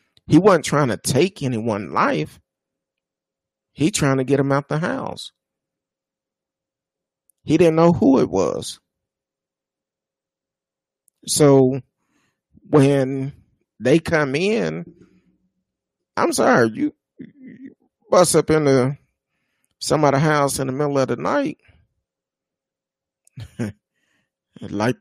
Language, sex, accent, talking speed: English, male, American, 105 wpm